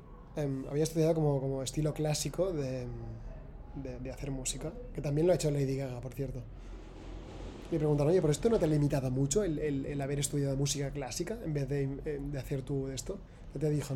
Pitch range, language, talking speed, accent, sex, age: 130-155 Hz, Spanish, 205 wpm, Spanish, male, 20-39